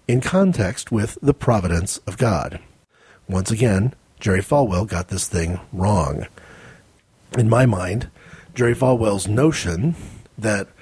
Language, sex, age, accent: English, male, 40-59, American